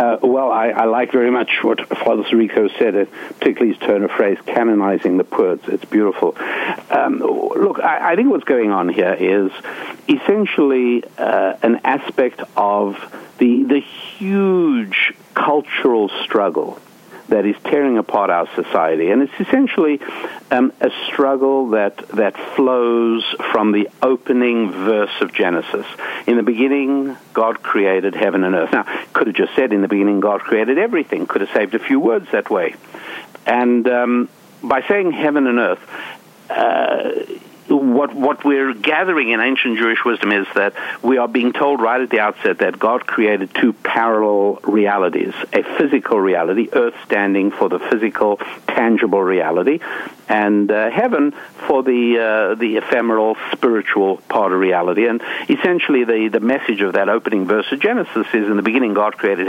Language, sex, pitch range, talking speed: English, male, 105-145 Hz, 160 wpm